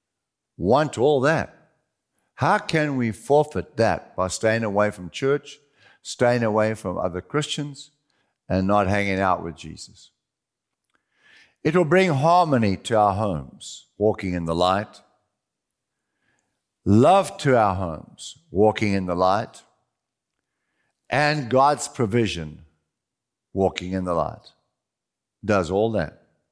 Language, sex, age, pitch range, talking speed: English, male, 50-69, 100-150 Hz, 120 wpm